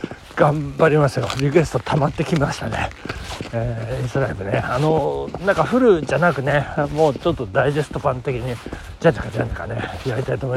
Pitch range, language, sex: 125-205 Hz, Japanese, male